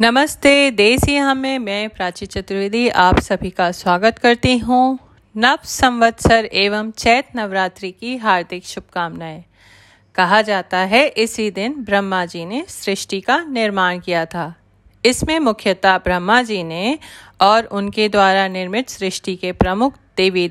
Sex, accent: female, native